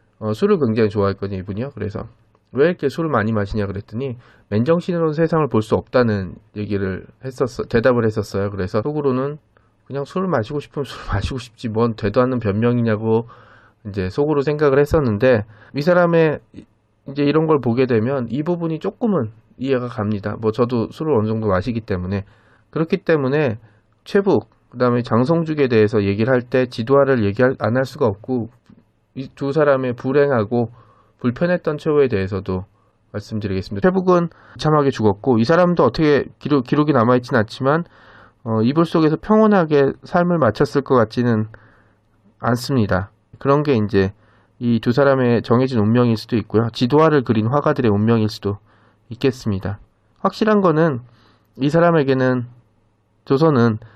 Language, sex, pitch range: Korean, male, 110-140 Hz